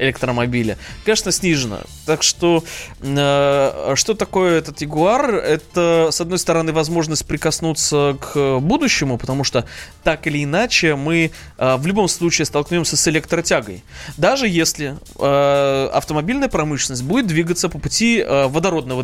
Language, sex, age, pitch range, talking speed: Russian, male, 20-39, 135-170 Hz, 130 wpm